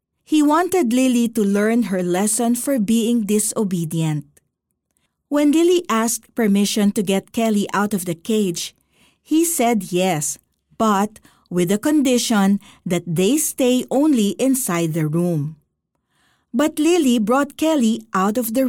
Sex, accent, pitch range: female, native, 185-260 Hz